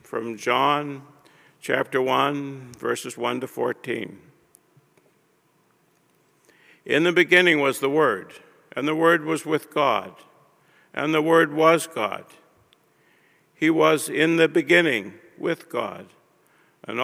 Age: 50-69